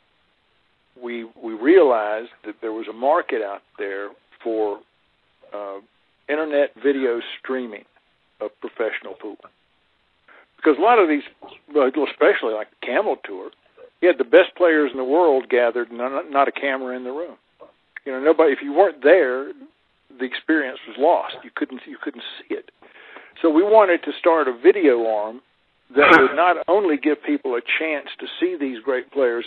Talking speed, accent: 170 wpm, American